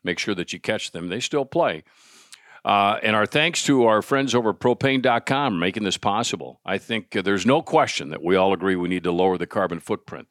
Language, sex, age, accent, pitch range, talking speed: English, male, 50-69, American, 100-135 Hz, 235 wpm